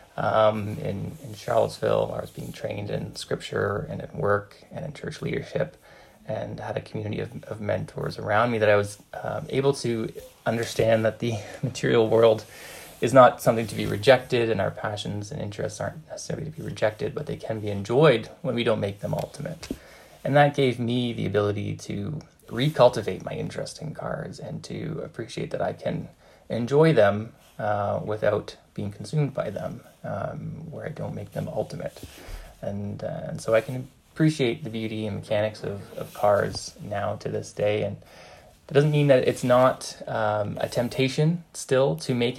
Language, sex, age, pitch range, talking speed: English, male, 20-39, 105-135 Hz, 180 wpm